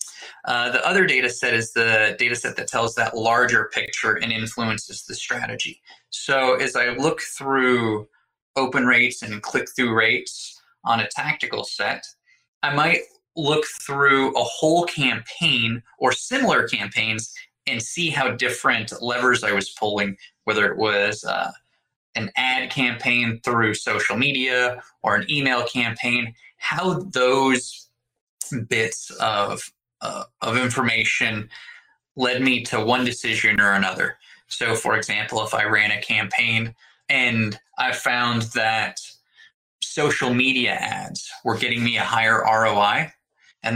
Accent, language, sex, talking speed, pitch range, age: American, English, male, 135 wpm, 115-135 Hz, 20-39